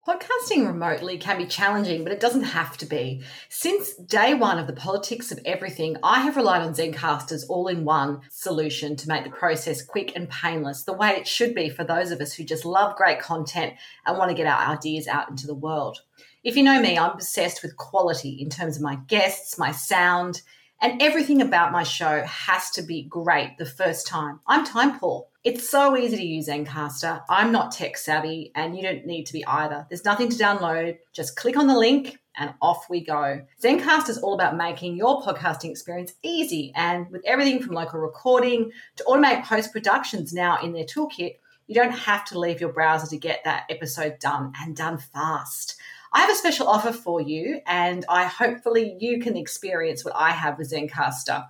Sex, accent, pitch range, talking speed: female, Australian, 160-230 Hz, 200 wpm